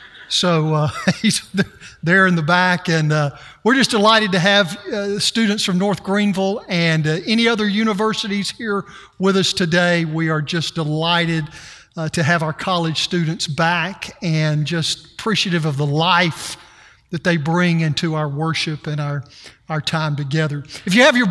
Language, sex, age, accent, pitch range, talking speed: English, male, 50-69, American, 165-215 Hz, 170 wpm